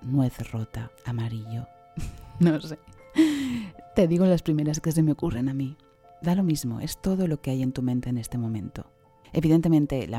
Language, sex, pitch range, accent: Spanish, female, 120-155 Hz, Spanish